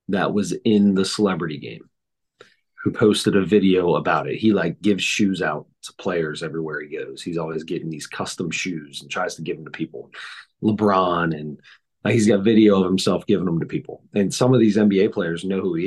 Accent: American